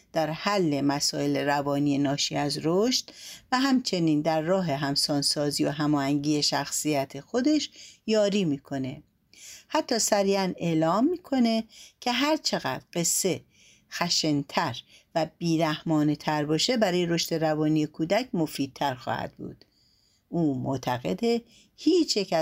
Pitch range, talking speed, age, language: 145-210 Hz, 105 wpm, 60-79, Persian